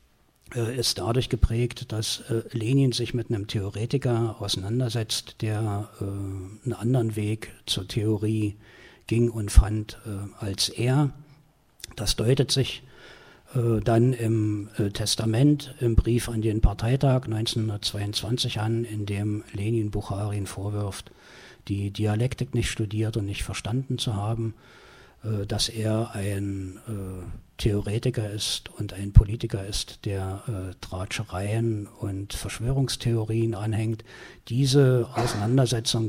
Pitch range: 105-120 Hz